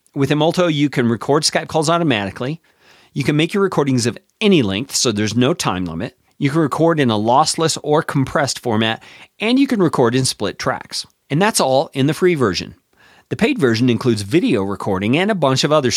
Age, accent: 40-59, American